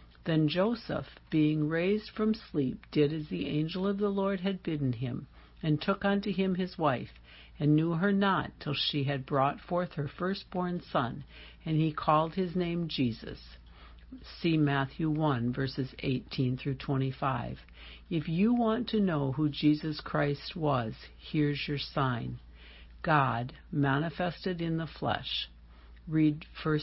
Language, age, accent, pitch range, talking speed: English, 60-79, American, 130-170 Hz, 150 wpm